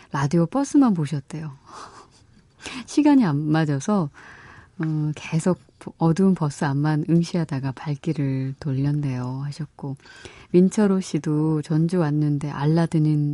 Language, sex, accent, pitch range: Korean, female, native, 145-180 Hz